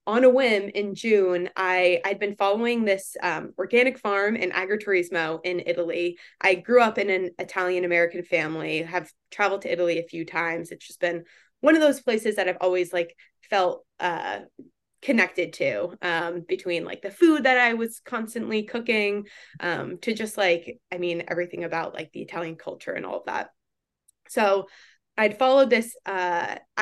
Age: 20-39